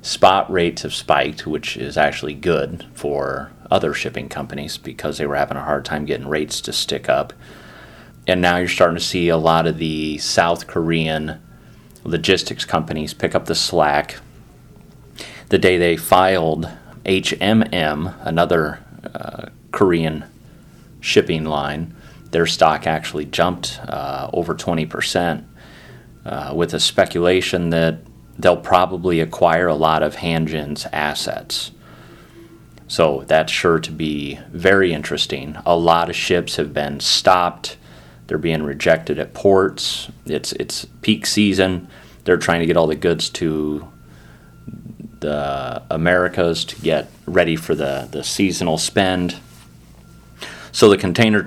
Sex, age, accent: male, 30-49, American